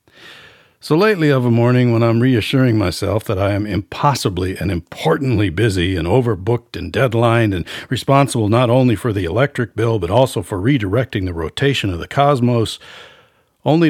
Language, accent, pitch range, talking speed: English, American, 95-130 Hz, 165 wpm